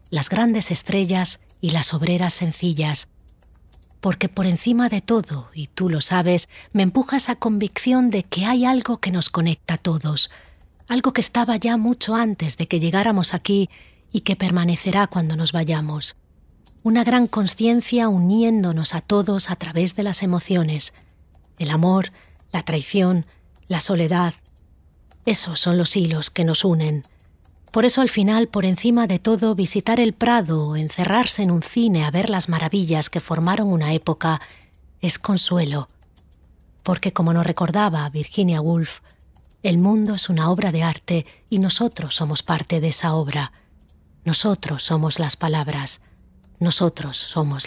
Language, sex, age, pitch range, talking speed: Spanish, female, 30-49, 150-200 Hz, 150 wpm